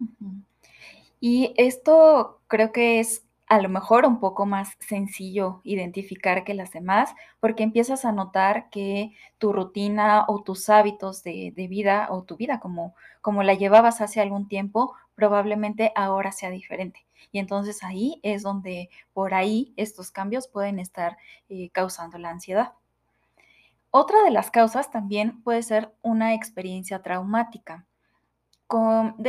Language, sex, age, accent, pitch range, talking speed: Spanish, female, 20-39, Mexican, 190-225 Hz, 140 wpm